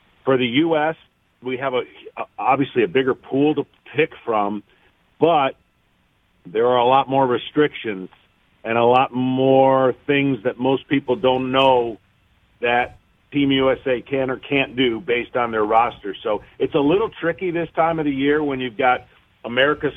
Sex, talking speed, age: male, 160 wpm, 50-69